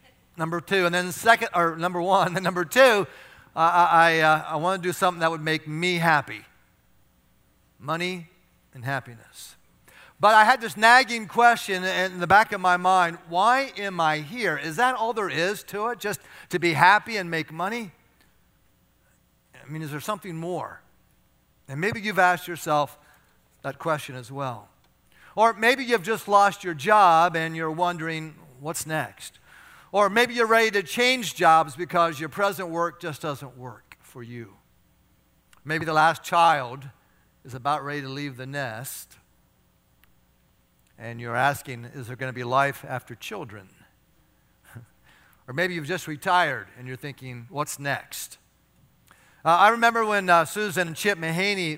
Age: 50-69